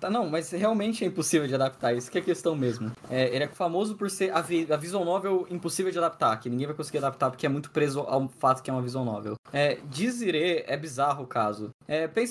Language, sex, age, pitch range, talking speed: Portuguese, male, 10-29, 140-180 Hz, 245 wpm